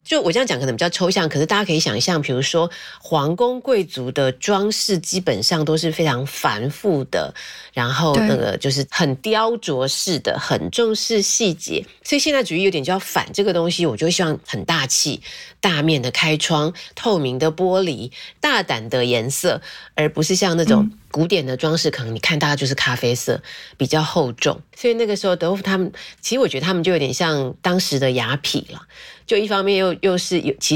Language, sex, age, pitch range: Chinese, female, 30-49, 140-195 Hz